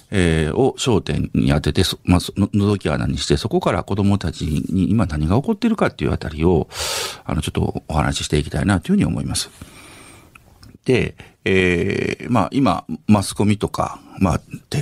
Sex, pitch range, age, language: male, 80-110 Hz, 50-69, Japanese